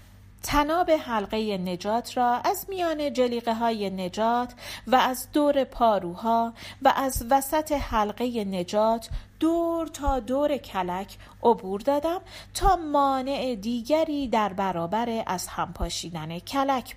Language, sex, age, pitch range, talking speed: Persian, female, 40-59, 180-280 Hz, 115 wpm